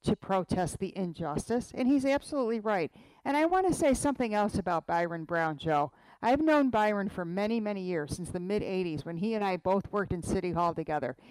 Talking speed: 210 wpm